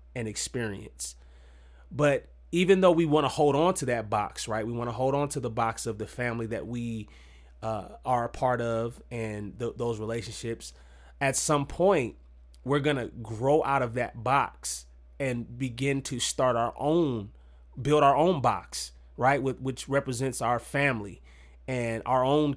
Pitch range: 100-140 Hz